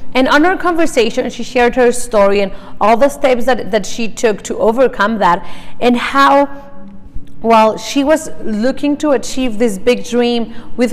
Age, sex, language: 30-49, female, English